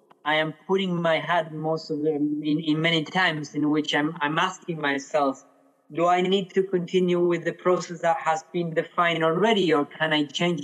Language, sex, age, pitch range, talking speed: English, male, 20-39, 145-175 Hz, 195 wpm